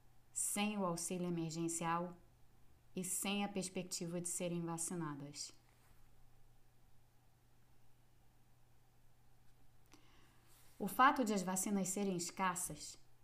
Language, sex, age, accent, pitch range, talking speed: Portuguese, female, 20-39, Brazilian, 125-190 Hz, 80 wpm